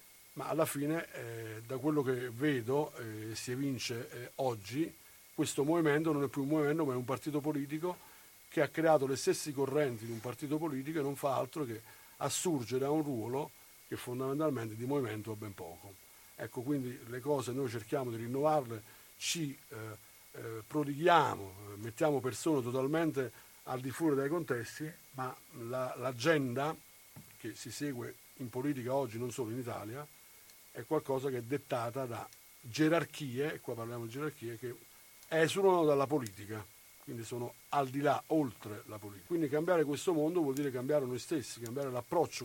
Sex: male